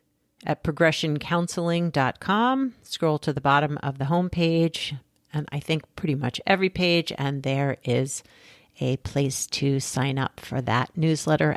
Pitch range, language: 145-170 Hz, English